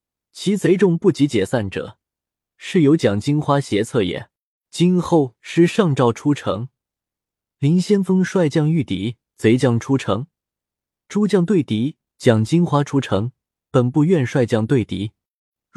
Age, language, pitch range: 20-39, Chinese, 110-160 Hz